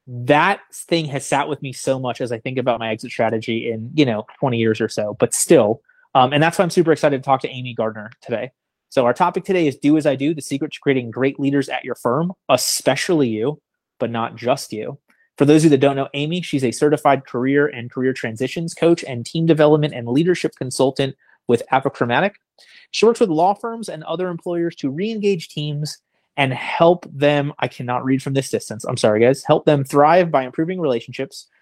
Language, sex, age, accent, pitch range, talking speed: English, male, 30-49, American, 130-165 Hz, 215 wpm